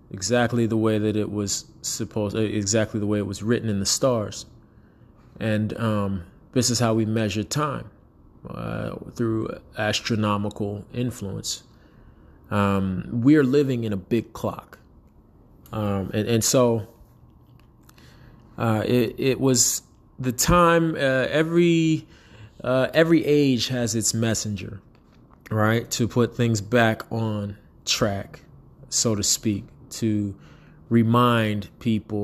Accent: American